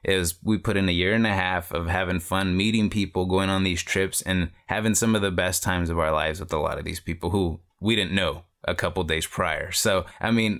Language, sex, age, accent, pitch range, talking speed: English, male, 20-39, American, 85-105 Hz, 255 wpm